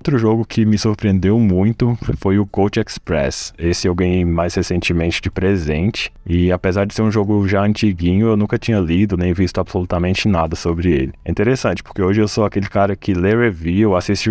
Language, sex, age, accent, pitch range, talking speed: Portuguese, male, 20-39, Brazilian, 85-100 Hz, 195 wpm